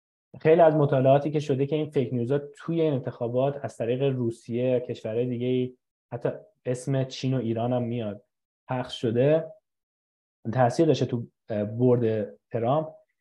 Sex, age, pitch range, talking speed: male, 20-39, 120-155 Hz, 135 wpm